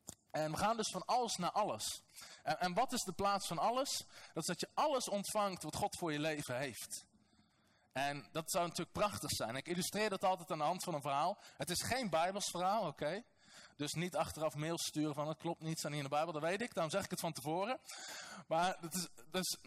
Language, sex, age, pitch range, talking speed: Dutch, male, 20-39, 160-225 Hz, 235 wpm